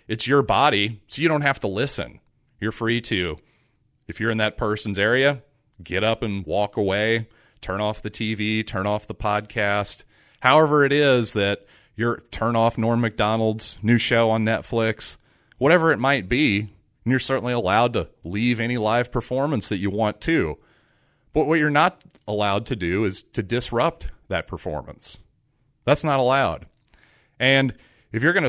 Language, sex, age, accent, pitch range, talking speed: English, male, 40-59, American, 105-130 Hz, 170 wpm